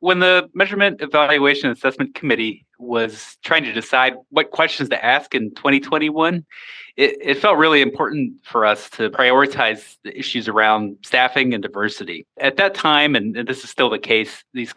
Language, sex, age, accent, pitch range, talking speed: English, male, 30-49, American, 115-155 Hz, 165 wpm